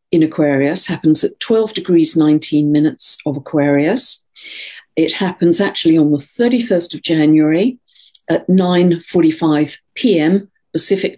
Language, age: English, 50-69